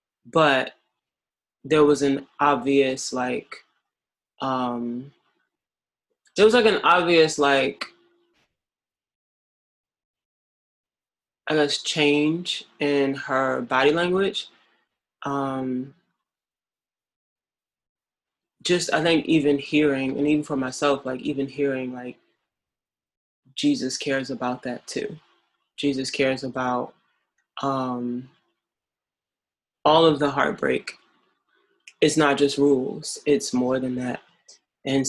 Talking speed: 95 wpm